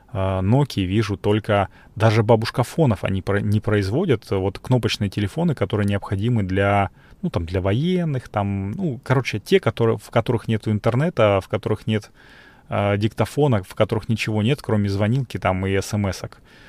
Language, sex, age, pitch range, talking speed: Russian, male, 30-49, 100-120 Hz, 155 wpm